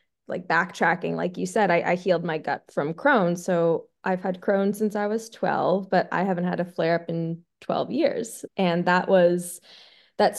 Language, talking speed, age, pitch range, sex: English, 195 wpm, 20-39, 180-215 Hz, female